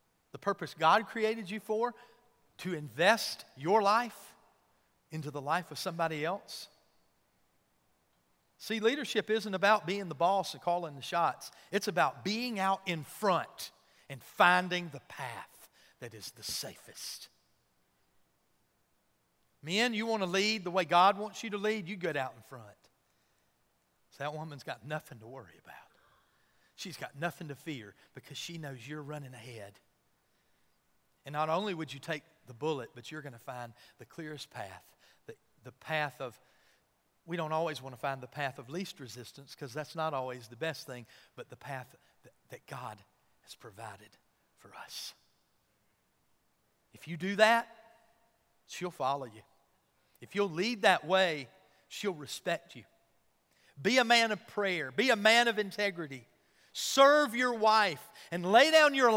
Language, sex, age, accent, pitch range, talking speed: English, male, 40-59, American, 140-210 Hz, 160 wpm